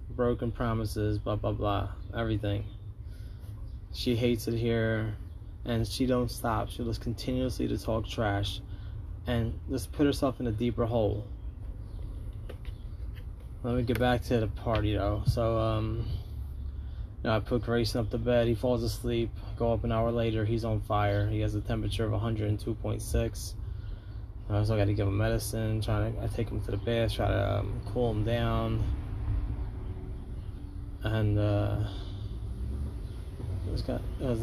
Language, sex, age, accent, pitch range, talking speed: English, male, 20-39, American, 100-115 Hz, 165 wpm